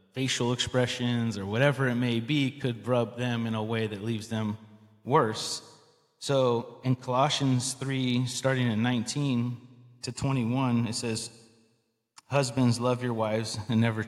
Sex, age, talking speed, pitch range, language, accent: male, 30-49, 145 wpm, 110-125 Hz, English, American